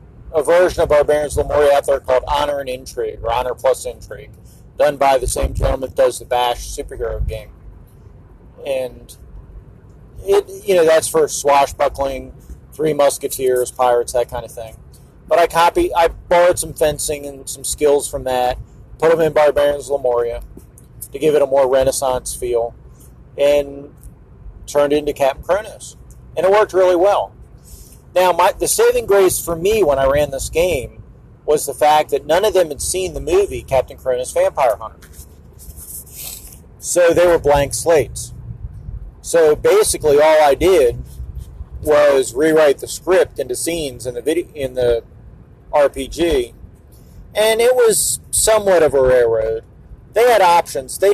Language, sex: English, male